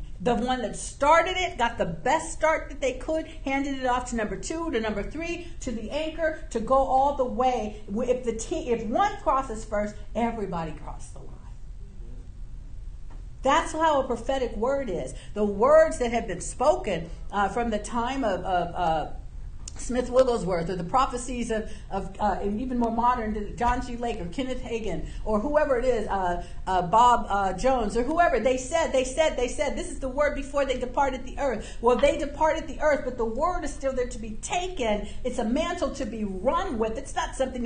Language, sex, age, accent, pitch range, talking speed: English, female, 50-69, American, 215-290 Hz, 200 wpm